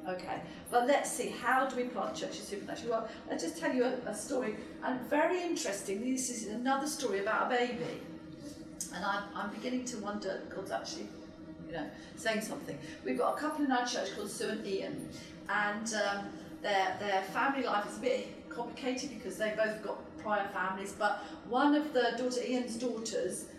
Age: 40-59